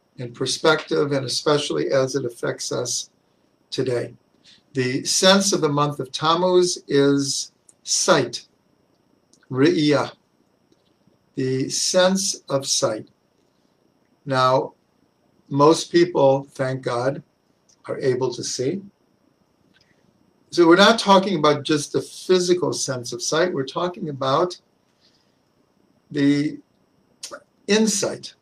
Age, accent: 60-79, American